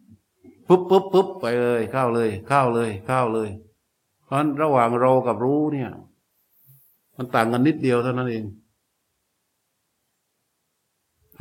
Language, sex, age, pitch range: Thai, male, 60-79, 115-135 Hz